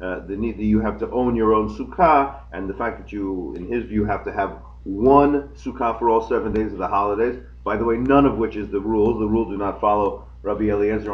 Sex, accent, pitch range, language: male, American, 95-145 Hz, English